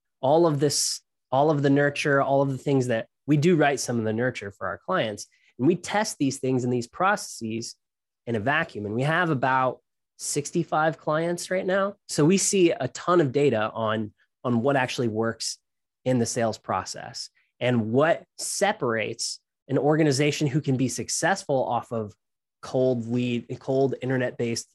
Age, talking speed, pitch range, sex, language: 20-39, 175 wpm, 115-150 Hz, male, English